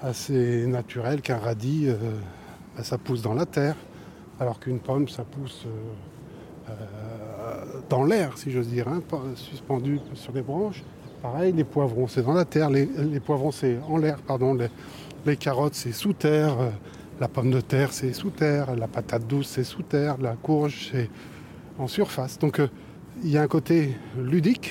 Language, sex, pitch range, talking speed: French, male, 125-150 Hz, 180 wpm